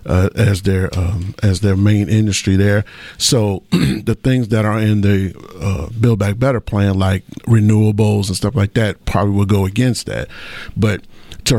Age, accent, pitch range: 50-69, American, 100-115 Hz